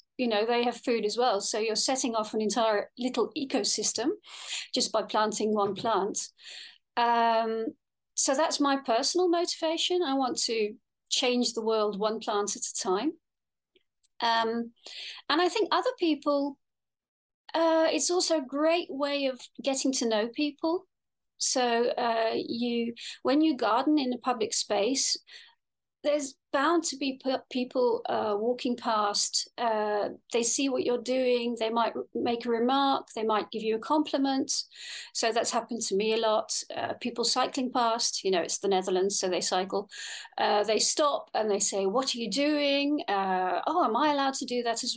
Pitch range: 225-285 Hz